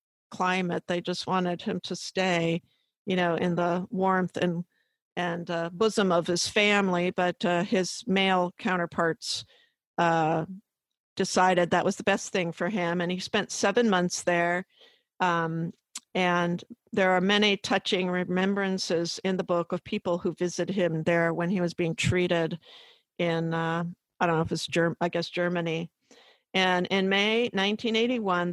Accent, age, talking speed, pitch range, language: American, 50-69, 160 wpm, 170-195 Hz, English